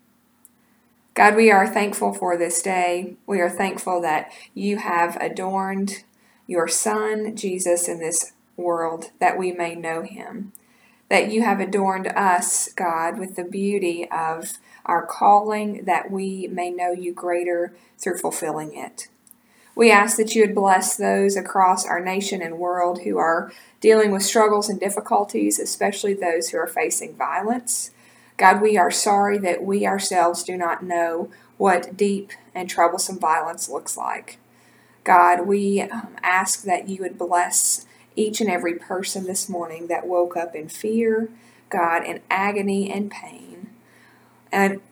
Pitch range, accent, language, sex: 175-205 Hz, American, English, female